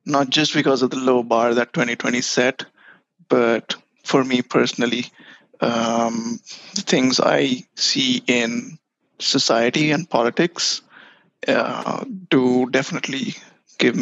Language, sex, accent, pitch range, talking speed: English, male, Indian, 125-170 Hz, 115 wpm